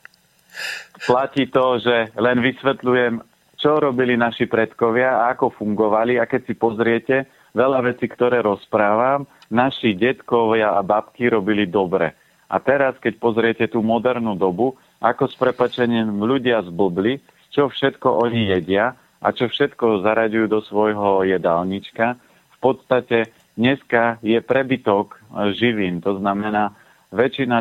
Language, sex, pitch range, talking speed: Slovak, male, 105-125 Hz, 125 wpm